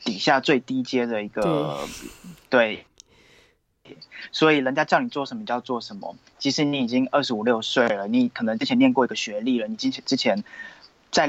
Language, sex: Chinese, male